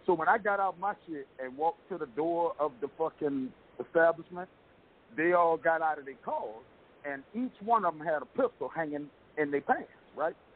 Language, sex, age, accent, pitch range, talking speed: English, male, 50-69, American, 145-215 Hz, 210 wpm